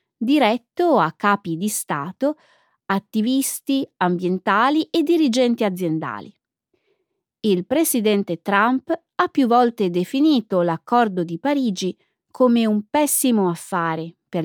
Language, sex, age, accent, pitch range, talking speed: Italian, female, 30-49, native, 180-265 Hz, 105 wpm